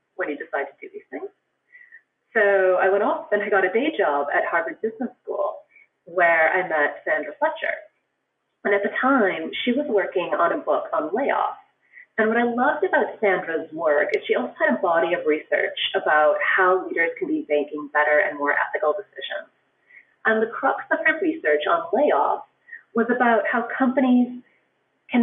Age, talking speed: 30-49, 185 wpm